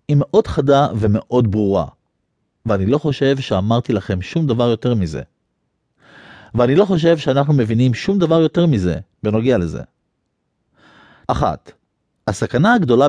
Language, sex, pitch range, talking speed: English, male, 105-150 Hz, 125 wpm